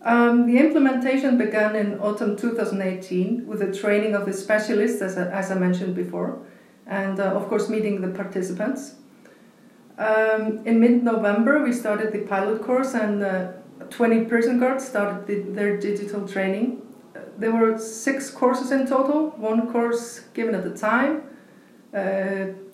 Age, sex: 40-59, female